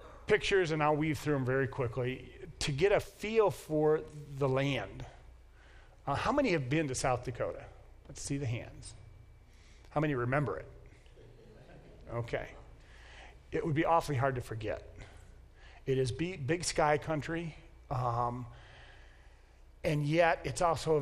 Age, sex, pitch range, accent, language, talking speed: 40-59, male, 110-145 Hz, American, English, 145 wpm